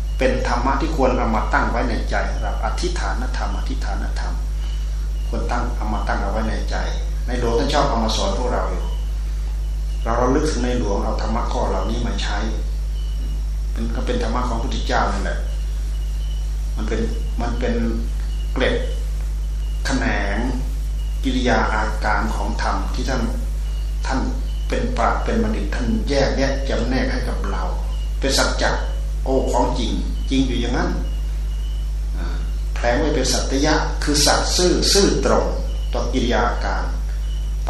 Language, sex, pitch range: Thai, male, 75-115 Hz